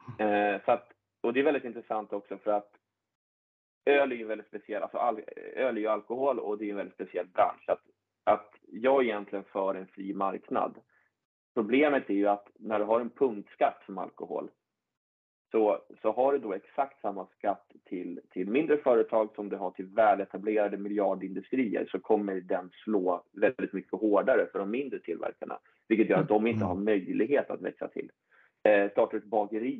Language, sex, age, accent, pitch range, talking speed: Swedish, male, 30-49, native, 100-130 Hz, 180 wpm